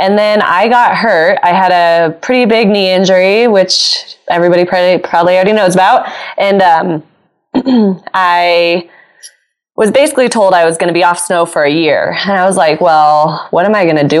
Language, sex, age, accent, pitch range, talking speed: English, female, 20-39, American, 160-195 Hz, 195 wpm